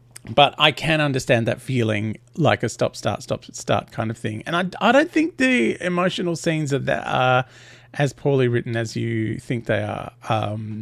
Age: 40-59